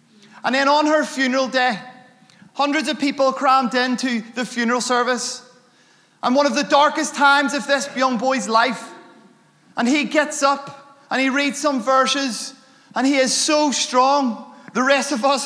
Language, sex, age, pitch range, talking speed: English, male, 20-39, 230-270 Hz, 165 wpm